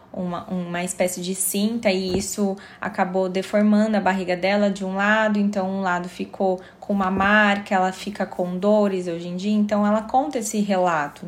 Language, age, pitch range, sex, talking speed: Portuguese, 20-39, 190-240 Hz, female, 180 wpm